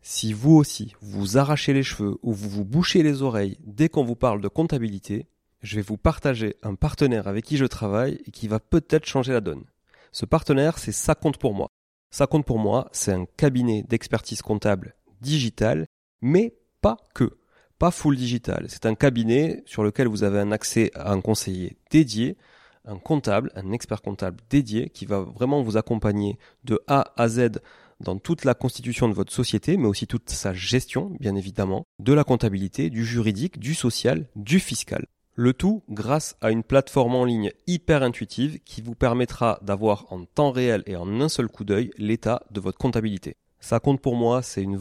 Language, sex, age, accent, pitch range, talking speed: French, male, 30-49, French, 105-135 Hz, 190 wpm